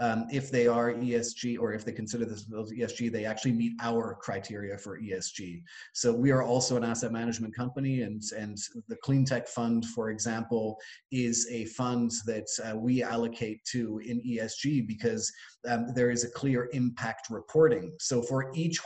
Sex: male